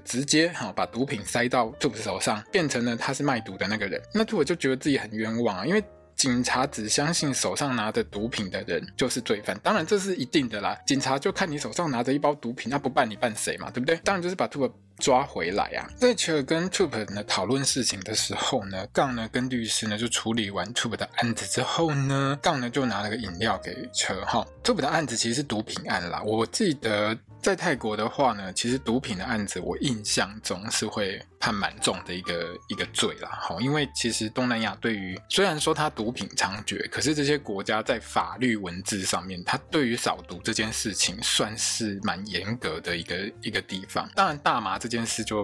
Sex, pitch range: male, 110-145 Hz